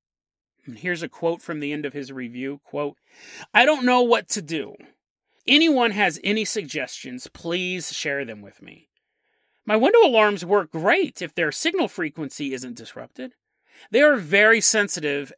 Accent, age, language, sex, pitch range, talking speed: American, 30-49, English, male, 145-215 Hz, 155 wpm